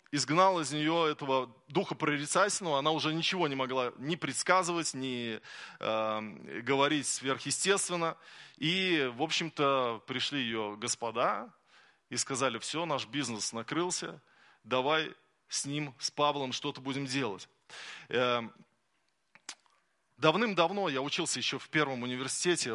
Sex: male